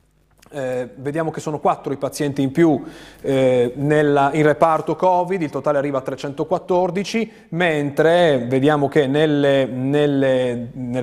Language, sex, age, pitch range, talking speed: Italian, male, 30-49, 130-170 Hz, 130 wpm